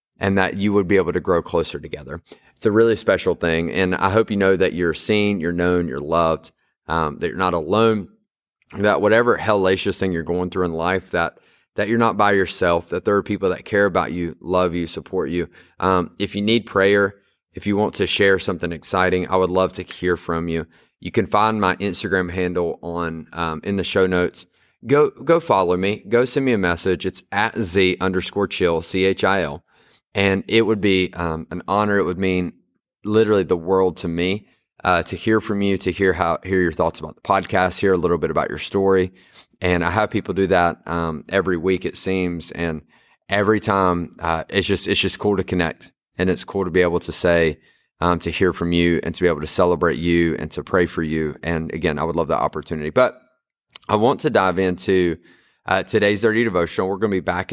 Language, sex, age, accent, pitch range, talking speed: English, male, 30-49, American, 85-100 Hz, 220 wpm